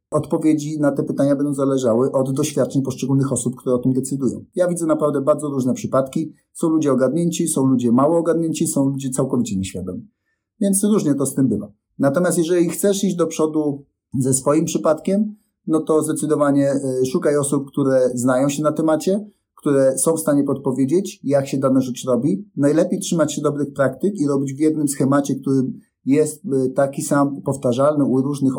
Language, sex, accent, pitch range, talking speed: Polish, male, native, 130-160 Hz, 175 wpm